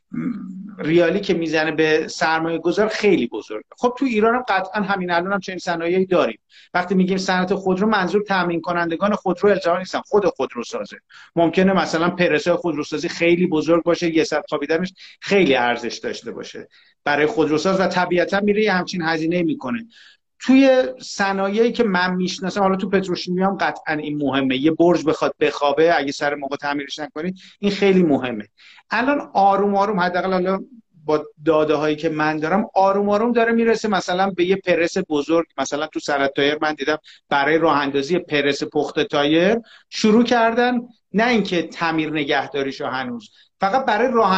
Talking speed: 165 wpm